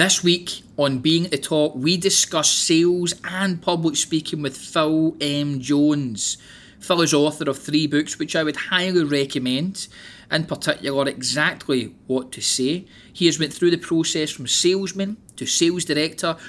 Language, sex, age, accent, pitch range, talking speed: English, male, 20-39, British, 130-160 Hz, 160 wpm